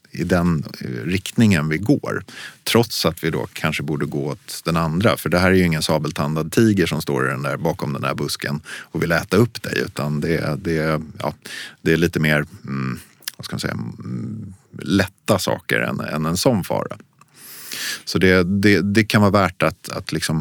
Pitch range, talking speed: 75-100 Hz, 195 wpm